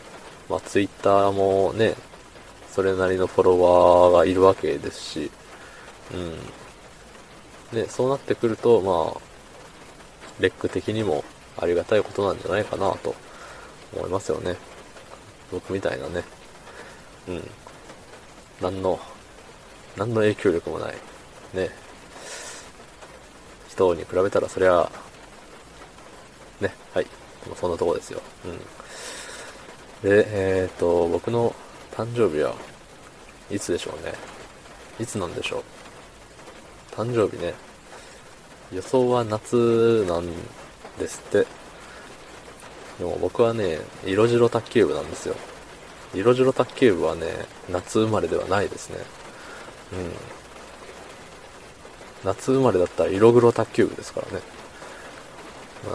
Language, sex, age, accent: Japanese, male, 20-39, native